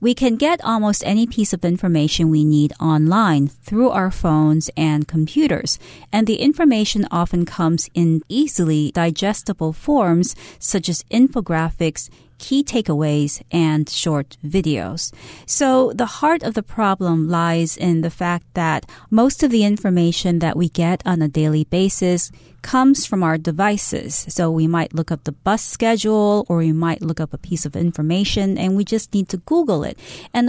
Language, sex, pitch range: Chinese, female, 160-210 Hz